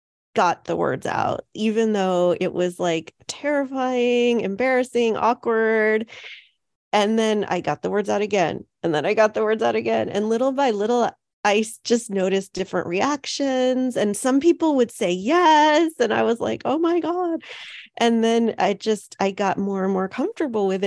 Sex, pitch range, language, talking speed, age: female, 190-245 Hz, English, 175 wpm, 30-49